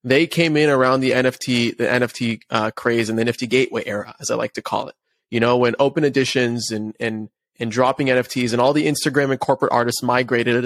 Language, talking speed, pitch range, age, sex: English, 220 wpm, 125-150 Hz, 20-39, male